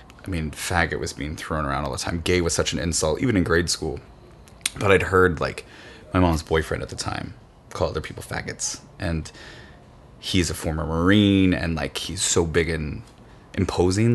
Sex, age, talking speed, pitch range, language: male, 20-39, 190 wpm, 80-100 Hz, English